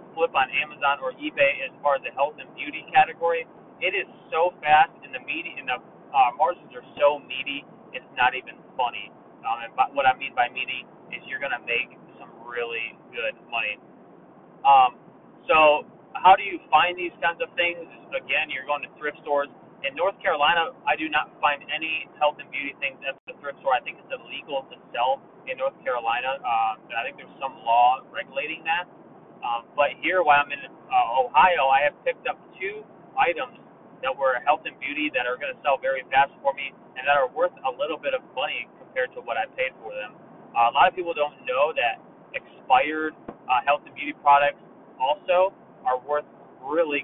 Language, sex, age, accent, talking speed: English, male, 30-49, American, 200 wpm